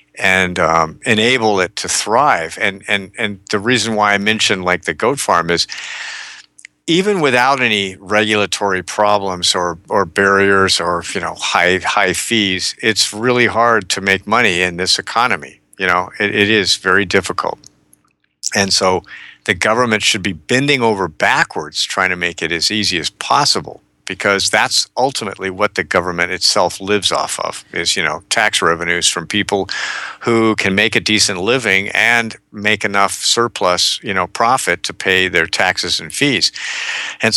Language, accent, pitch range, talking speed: English, American, 95-110 Hz, 165 wpm